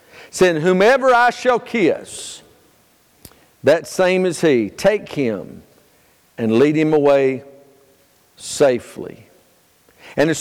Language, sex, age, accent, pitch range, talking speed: English, male, 50-69, American, 170-250 Hz, 105 wpm